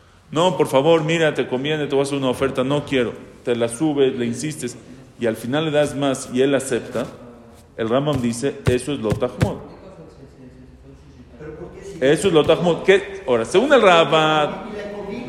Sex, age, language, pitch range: male, 40-59, English, 125-190 Hz